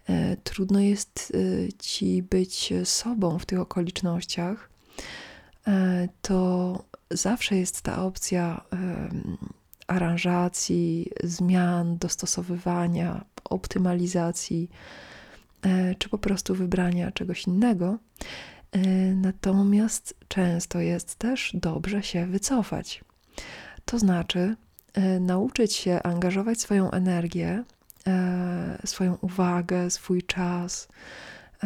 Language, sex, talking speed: Polish, female, 80 wpm